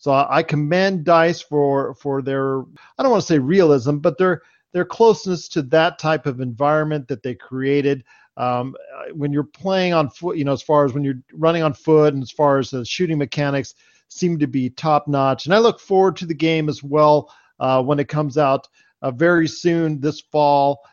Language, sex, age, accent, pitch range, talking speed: English, male, 40-59, American, 135-175 Hz, 205 wpm